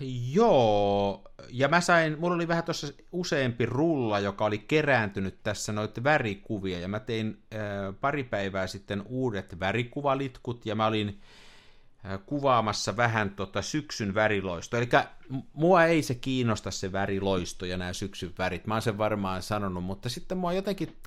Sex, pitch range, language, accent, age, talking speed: male, 100-135 Hz, Finnish, native, 50-69, 155 wpm